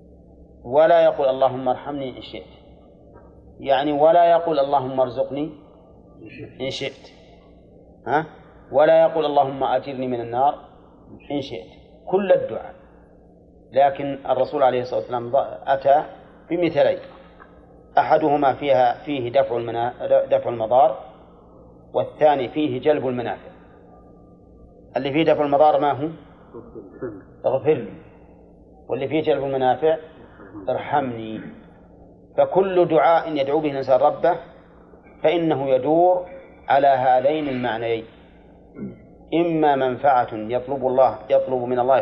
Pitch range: 125-150 Hz